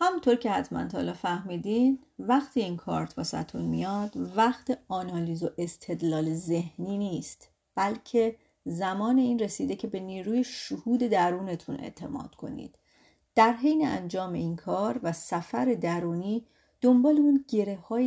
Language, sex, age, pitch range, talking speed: Persian, female, 30-49, 170-235 Hz, 130 wpm